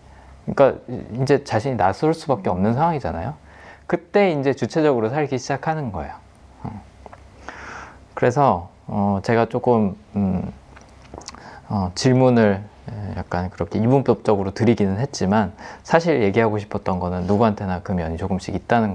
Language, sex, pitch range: Korean, male, 100-145 Hz